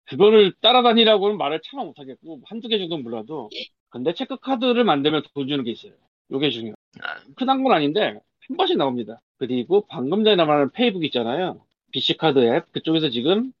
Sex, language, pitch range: male, Korean, 140-220 Hz